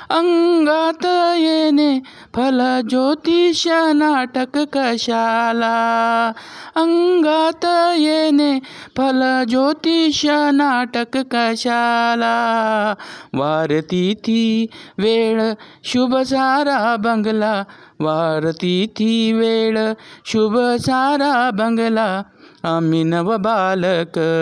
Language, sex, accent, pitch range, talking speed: Marathi, male, native, 190-260 Hz, 55 wpm